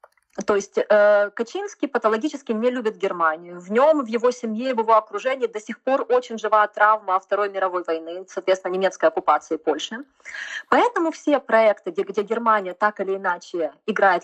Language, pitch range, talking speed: Russian, 185-255 Hz, 160 wpm